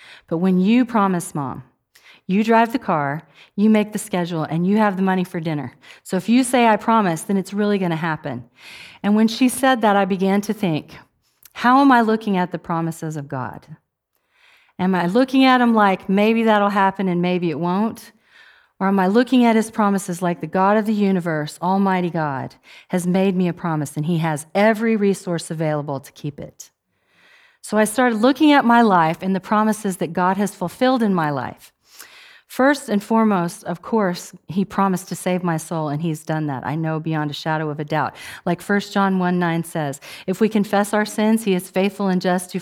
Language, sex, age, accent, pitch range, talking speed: English, female, 40-59, American, 165-220 Hz, 210 wpm